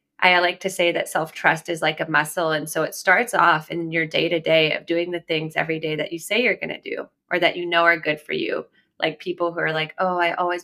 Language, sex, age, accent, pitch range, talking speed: English, female, 20-39, American, 155-185 Hz, 275 wpm